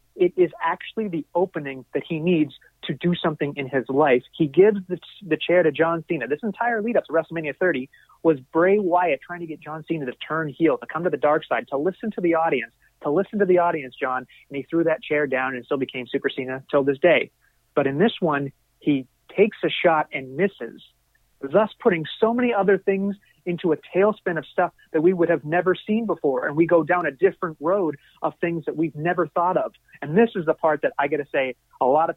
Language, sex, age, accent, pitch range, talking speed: English, male, 30-49, American, 145-180 Hz, 235 wpm